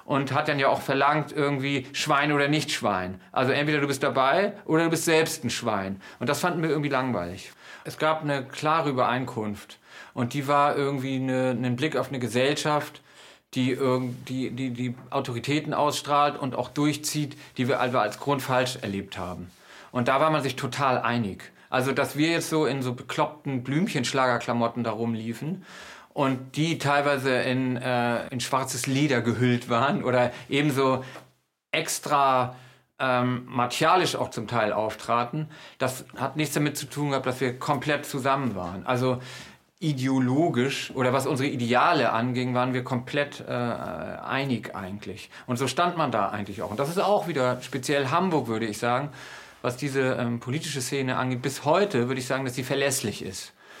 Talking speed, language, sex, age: 170 wpm, German, male, 40-59